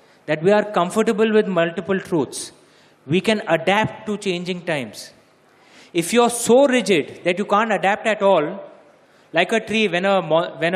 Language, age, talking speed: English, 30-49, 165 wpm